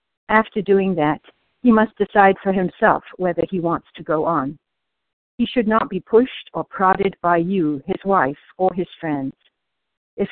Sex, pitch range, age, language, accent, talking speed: female, 165-195 Hz, 60-79, English, American, 170 wpm